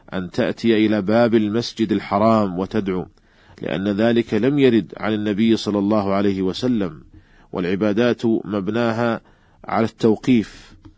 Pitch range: 100-115 Hz